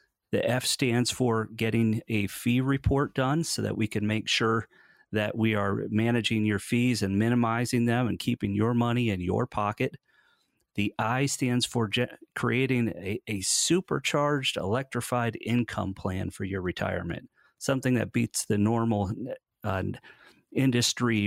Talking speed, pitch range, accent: 145 wpm, 100-120 Hz, American